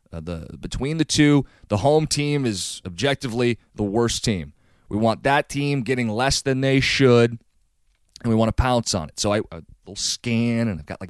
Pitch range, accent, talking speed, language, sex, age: 110-145 Hz, American, 195 wpm, English, male, 30-49